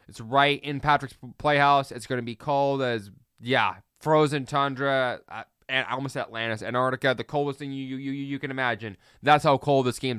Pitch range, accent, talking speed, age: 120-145 Hz, American, 195 wpm, 20-39